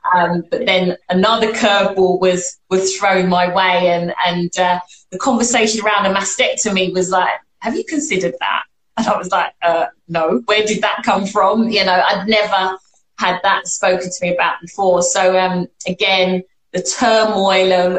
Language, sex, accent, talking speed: English, female, British, 175 wpm